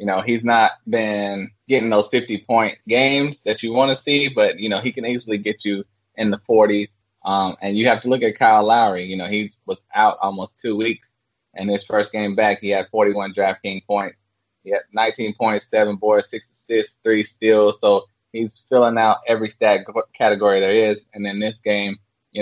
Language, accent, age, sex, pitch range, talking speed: English, American, 20-39, male, 100-125 Hz, 205 wpm